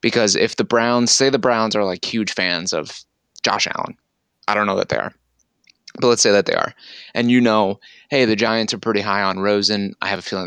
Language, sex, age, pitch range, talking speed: English, male, 20-39, 95-115 Hz, 235 wpm